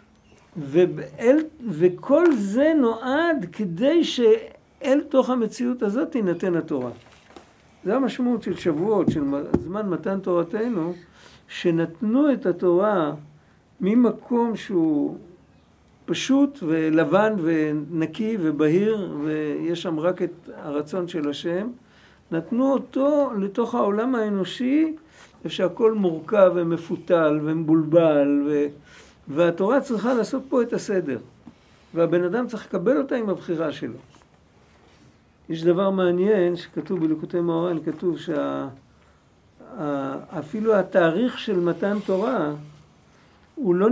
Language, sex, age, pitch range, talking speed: Hebrew, male, 60-79, 170-225 Hz, 100 wpm